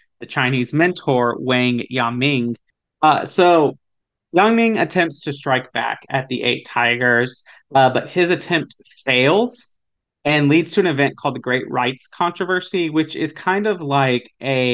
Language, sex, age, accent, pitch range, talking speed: English, male, 30-49, American, 125-155 Hz, 150 wpm